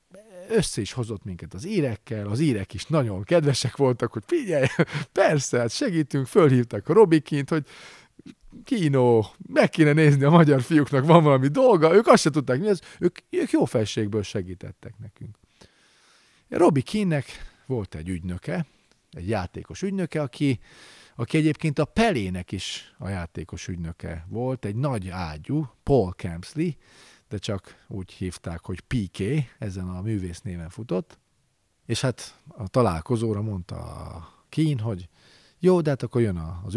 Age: 40-59